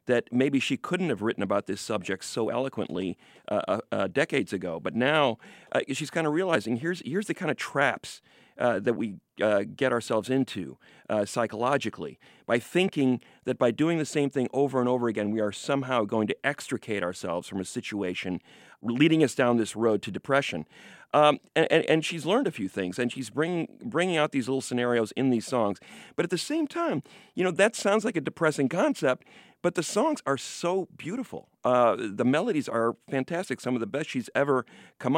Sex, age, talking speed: male, 40-59, 200 wpm